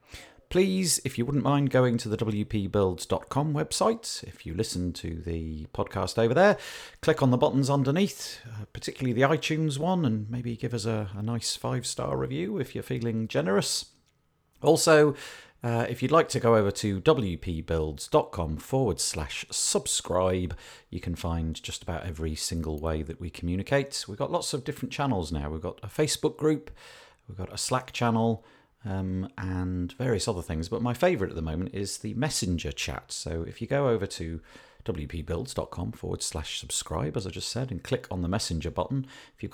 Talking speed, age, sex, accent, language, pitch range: 180 wpm, 40-59, male, British, English, 85-125 Hz